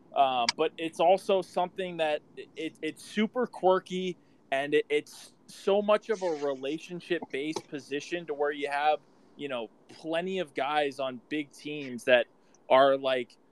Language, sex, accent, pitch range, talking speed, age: English, male, American, 130-165 Hz, 145 wpm, 20-39